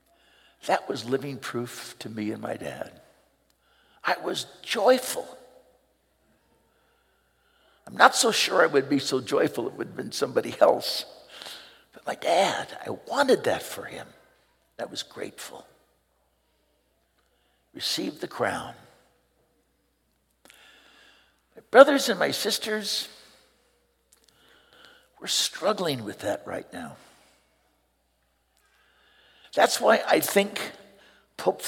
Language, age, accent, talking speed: English, 60-79, American, 110 wpm